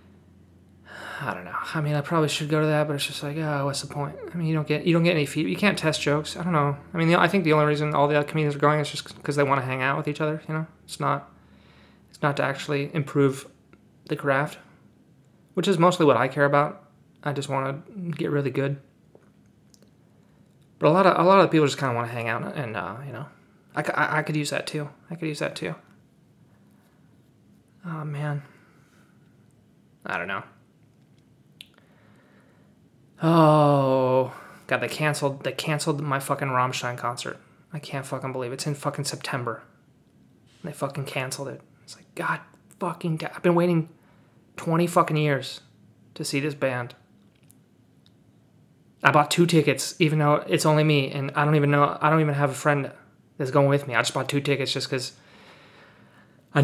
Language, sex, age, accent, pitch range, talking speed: English, male, 20-39, American, 135-155 Hz, 200 wpm